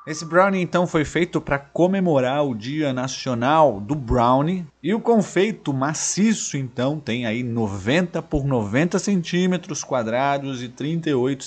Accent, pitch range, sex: Brazilian, 120-165 Hz, male